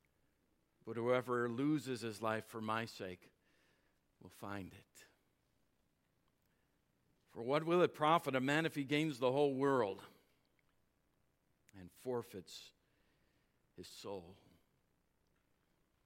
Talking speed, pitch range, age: 105 wpm, 105-140 Hz, 50-69